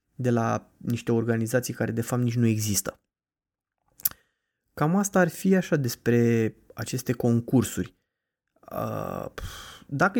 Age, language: 20-39, Romanian